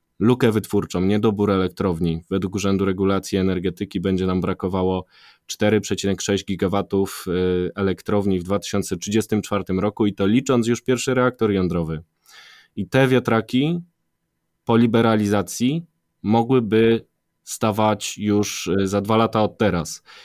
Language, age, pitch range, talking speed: Polish, 20-39, 95-110 Hz, 110 wpm